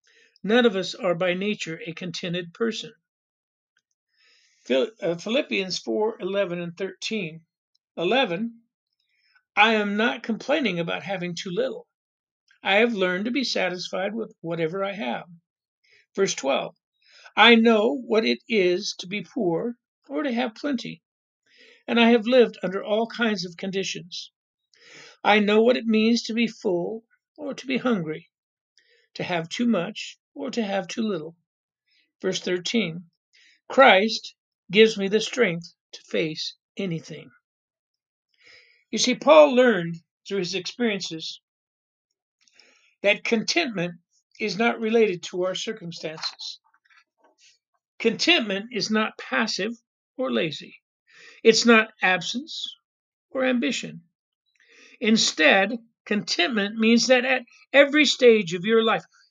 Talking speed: 125 wpm